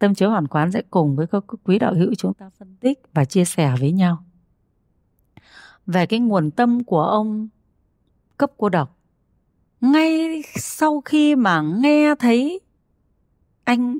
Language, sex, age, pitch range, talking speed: Vietnamese, female, 30-49, 165-245 Hz, 155 wpm